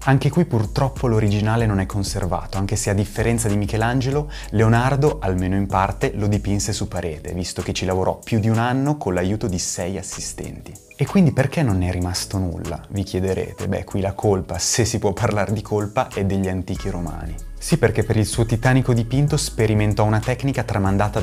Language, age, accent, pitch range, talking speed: Italian, 30-49, native, 95-115 Hz, 190 wpm